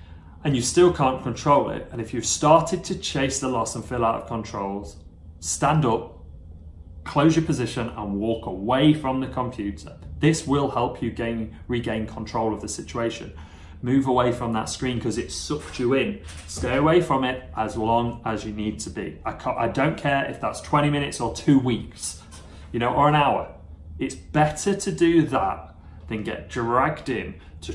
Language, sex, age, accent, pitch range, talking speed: English, male, 30-49, British, 100-130 Hz, 190 wpm